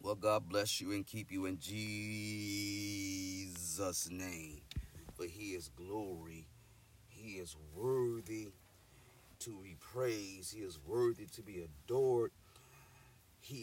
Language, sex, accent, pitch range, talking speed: English, male, American, 80-110 Hz, 120 wpm